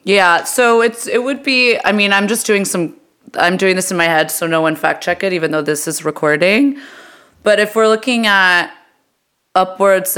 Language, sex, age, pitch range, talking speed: English, female, 20-39, 165-210 Hz, 205 wpm